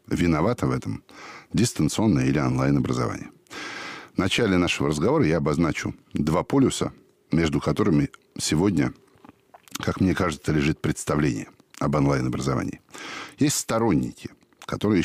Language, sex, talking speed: Russian, male, 110 wpm